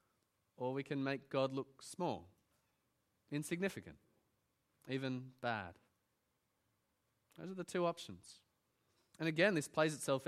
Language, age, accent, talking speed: English, 20-39, Australian, 115 wpm